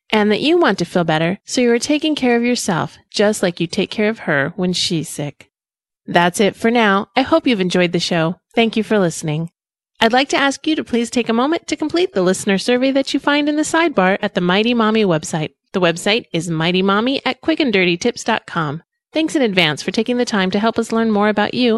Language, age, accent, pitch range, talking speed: English, 30-49, American, 185-265 Hz, 230 wpm